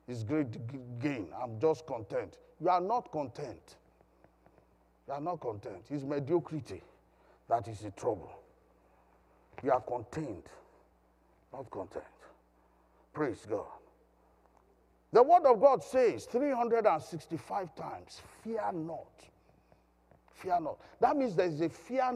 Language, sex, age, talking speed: English, male, 50-69, 120 wpm